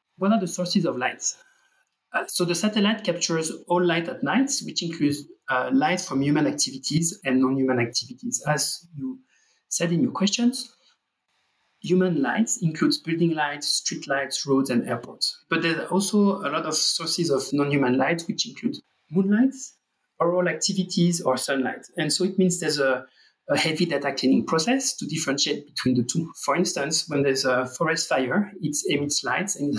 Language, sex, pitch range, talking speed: English, male, 140-195 Hz, 175 wpm